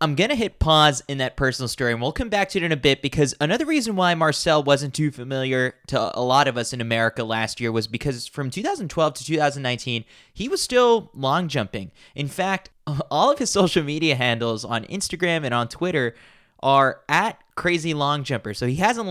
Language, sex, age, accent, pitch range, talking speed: English, male, 20-39, American, 120-175 Hz, 210 wpm